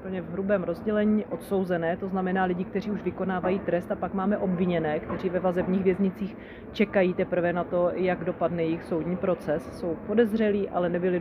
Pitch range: 165-190 Hz